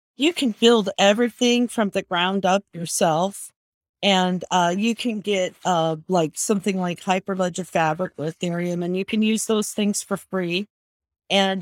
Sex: female